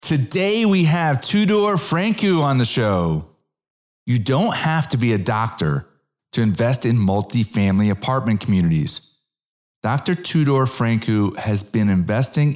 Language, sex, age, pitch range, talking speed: English, male, 40-59, 100-140 Hz, 130 wpm